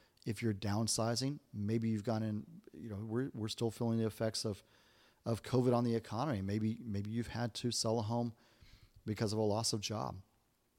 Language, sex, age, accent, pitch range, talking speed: English, male, 40-59, American, 110-130 Hz, 195 wpm